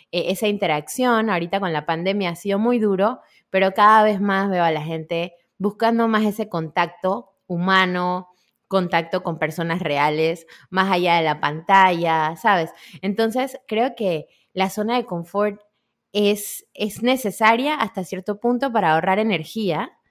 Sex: female